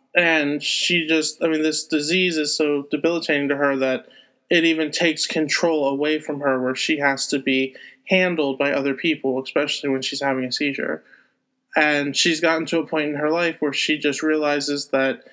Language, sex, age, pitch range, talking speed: English, male, 20-39, 145-170 Hz, 190 wpm